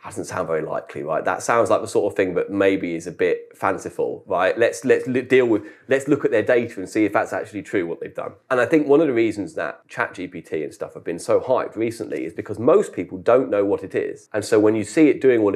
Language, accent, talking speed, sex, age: English, British, 280 wpm, male, 30-49